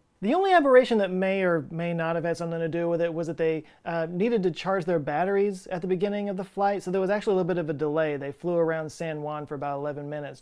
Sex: male